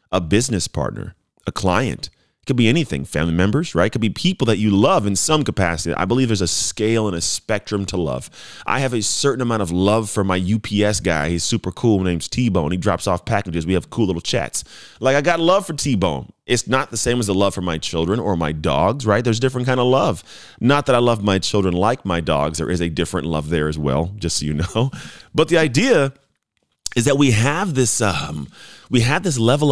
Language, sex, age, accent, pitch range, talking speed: English, male, 30-49, American, 90-120 Hz, 240 wpm